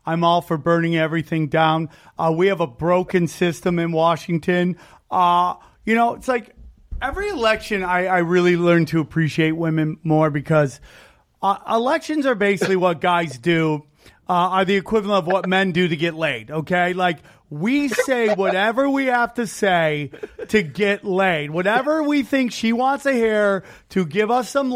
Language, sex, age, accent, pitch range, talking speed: English, male, 30-49, American, 175-245 Hz, 170 wpm